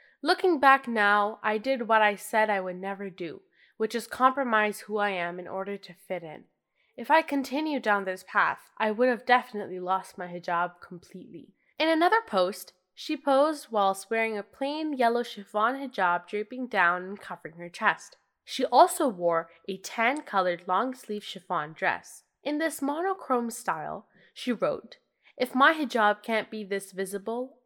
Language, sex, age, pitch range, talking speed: English, female, 10-29, 190-270 Hz, 170 wpm